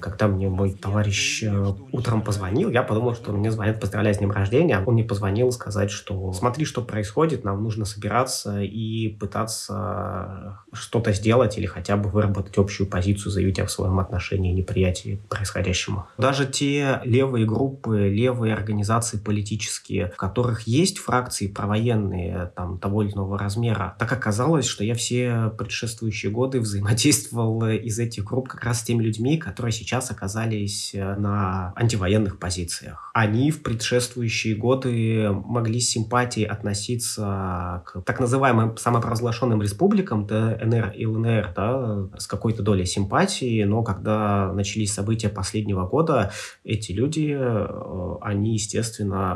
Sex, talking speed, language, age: male, 135 wpm, Russian, 20-39